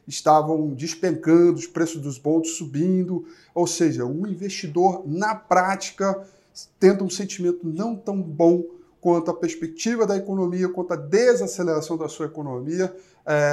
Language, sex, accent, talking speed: Portuguese, male, Brazilian, 140 wpm